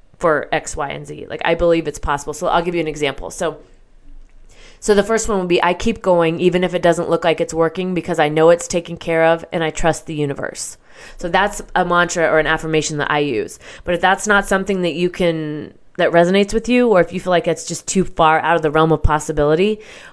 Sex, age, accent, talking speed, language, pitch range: female, 20-39, American, 245 wpm, English, 160-185 Hz